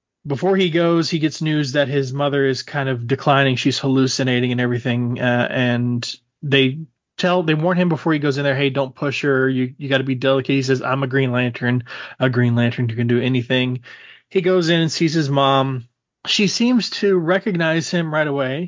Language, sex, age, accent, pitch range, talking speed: English, male, 20-39, American, 125-145 Hz, 210 wpm